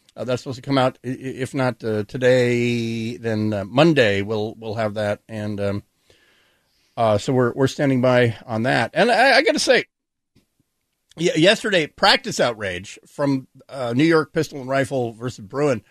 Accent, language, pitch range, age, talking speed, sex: American, English, 125-185 Hz, 50-69, 170 wpm, male